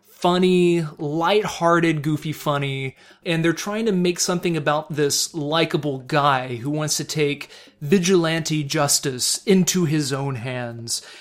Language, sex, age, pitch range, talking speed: English, male, 30-49, 150-215 Hz, 130 wpm